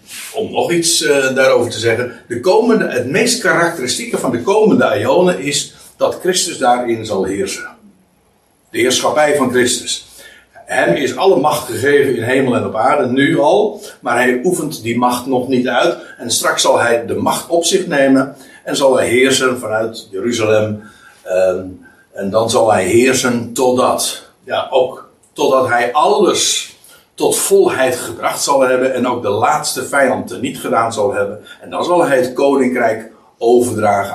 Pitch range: 120-160 Hz